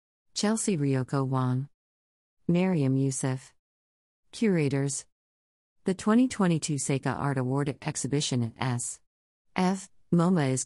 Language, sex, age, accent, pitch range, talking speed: English, female, 50-69, American, 130-160 Hz, 85 wpm